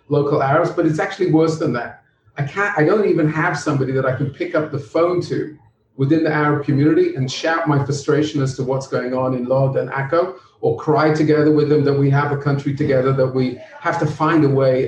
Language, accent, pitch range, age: English, British, 135-155 Hz, 40-59